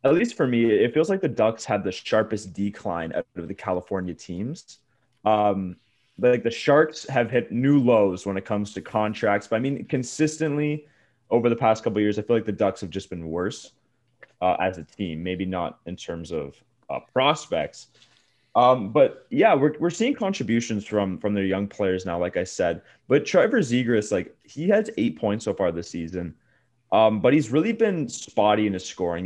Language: English